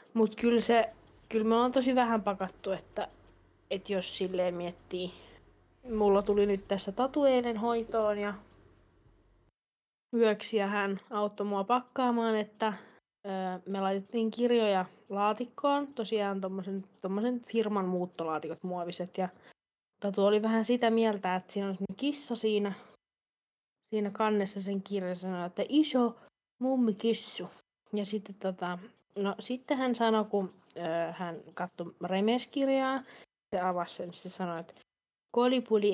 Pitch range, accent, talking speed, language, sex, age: 190-235 Hz, native, 125 wpm, Finnish, female, 20-39